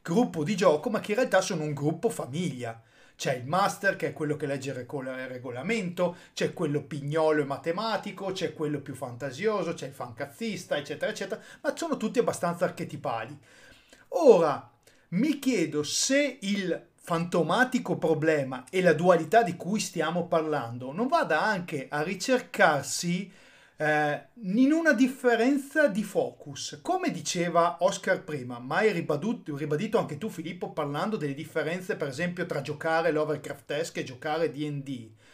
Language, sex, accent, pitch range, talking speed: Italian, male, native, 150-220 Hz, 150 wpm